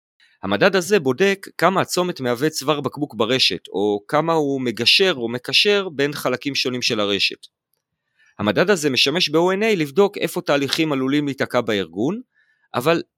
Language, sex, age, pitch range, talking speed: Hebrew, male, 40-59, 130-185 Hz, 140 wpm